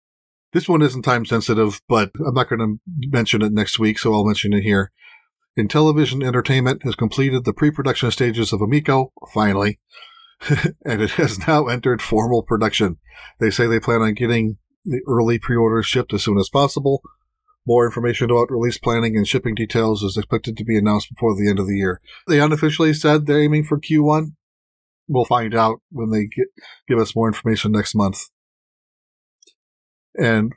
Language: English